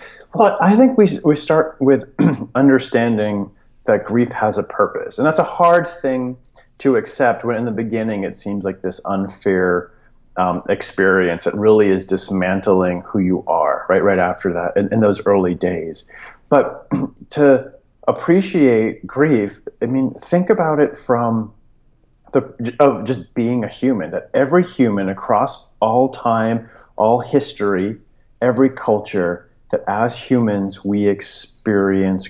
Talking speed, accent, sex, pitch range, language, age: 145 wpm, American, male, 100-130 Hz, English, 40-59